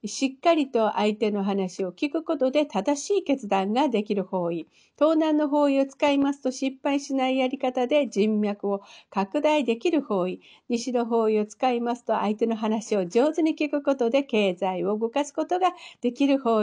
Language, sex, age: Japanese, female, 50-69